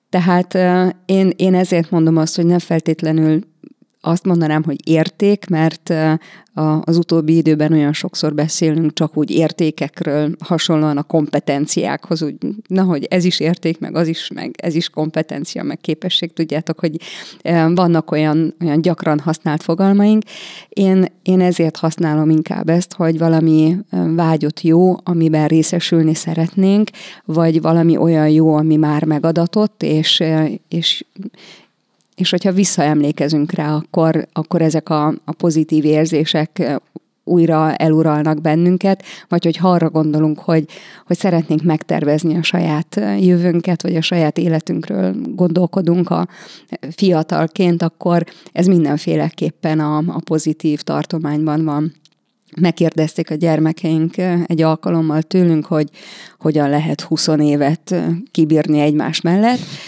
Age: 30-49